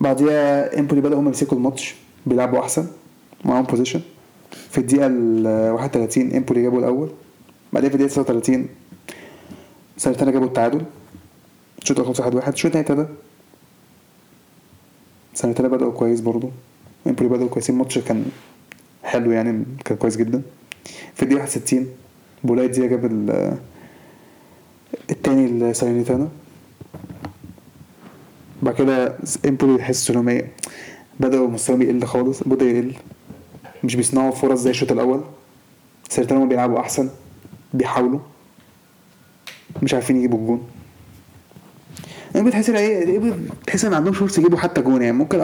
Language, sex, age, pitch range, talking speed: Arabic, male, 20-39, 125-170 Hz, 115 wpm